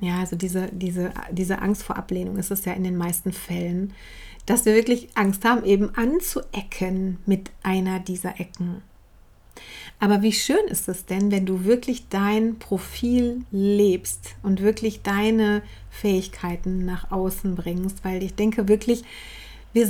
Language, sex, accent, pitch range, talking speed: German, female, German, 190-235 Hz, 150 wpm